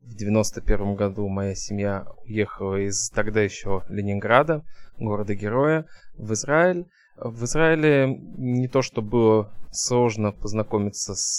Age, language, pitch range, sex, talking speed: 20-39, Russian, 105-125 Hz, male, 115 wpm